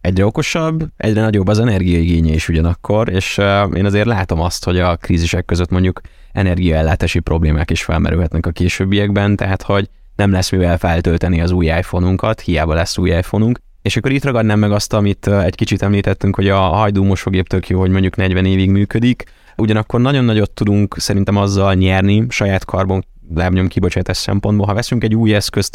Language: Hungarian